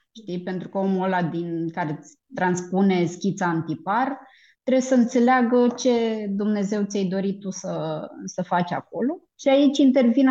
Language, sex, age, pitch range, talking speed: Romanian, female, 20-39, 185-260 Hz, 145 wpm